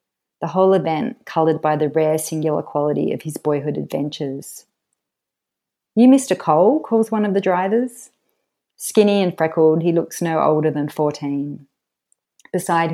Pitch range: 150-170 Hz